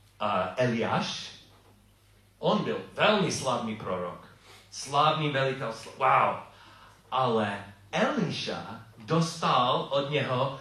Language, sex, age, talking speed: Czech, male, 40-59, 80 wpm